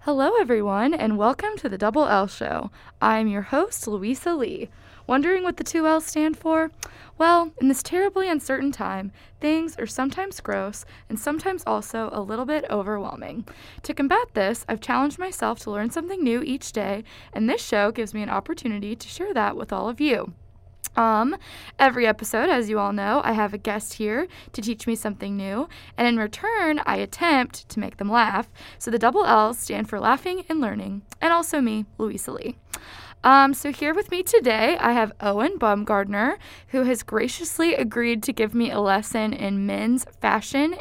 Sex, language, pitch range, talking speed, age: female, English, 220-300 Hz, 185 wpm, 20-39